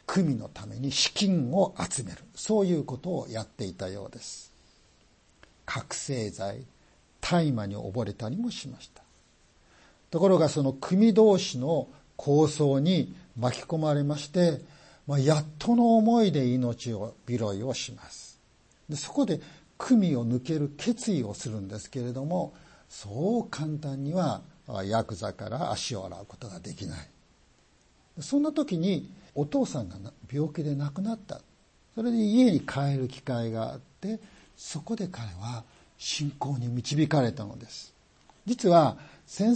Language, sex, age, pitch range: Japanese, male, 50-69, 125-185 Hz